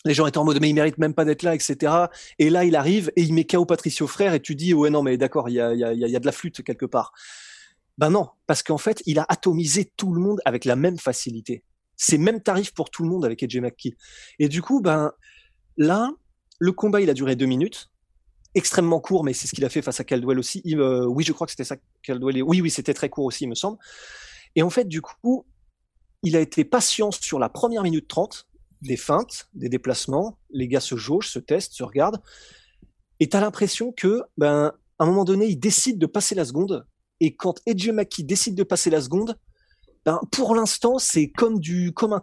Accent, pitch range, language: French, 140-195 Hz, French